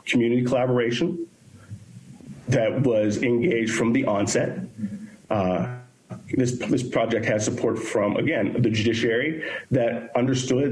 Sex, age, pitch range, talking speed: male, 40-59, 115-135 Hz, 110 wpm